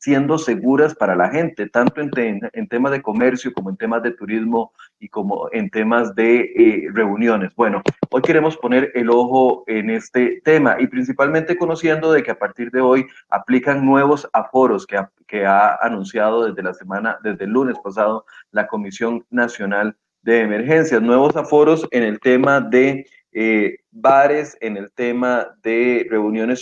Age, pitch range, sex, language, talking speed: 30-49, 115-145 Hz, male, Spanish, 170 wpm